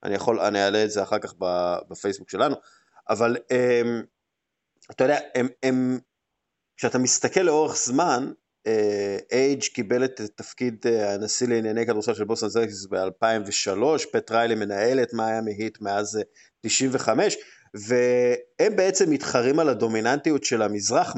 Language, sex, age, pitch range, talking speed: Hebrew, male, 30-49, 100-125 Hz, 130 wpm